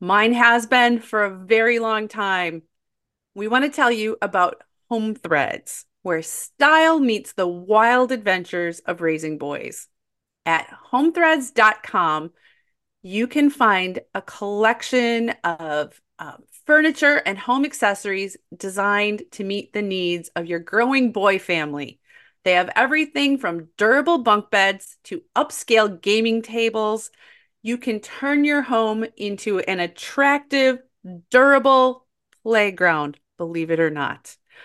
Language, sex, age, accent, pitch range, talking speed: English, female, 30-49, American, 180-250 Hz, 125 wpm